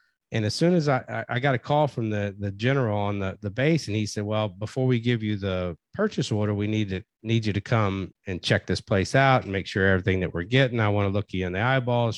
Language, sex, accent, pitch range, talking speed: English, male, American, 95-120 Hz, 270 wpm